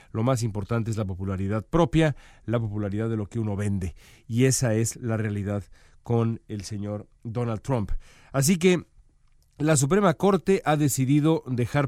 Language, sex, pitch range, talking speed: Spanish, male, 105-140 Hz, 160 wpm